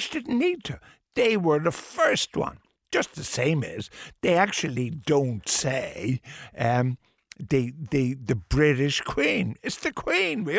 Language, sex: English, male